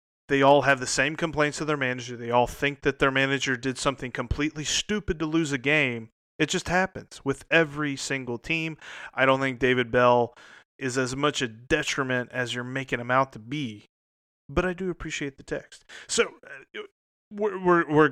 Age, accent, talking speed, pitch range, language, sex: 30-49, American, 190 wpm, 115-150 Hz, English, male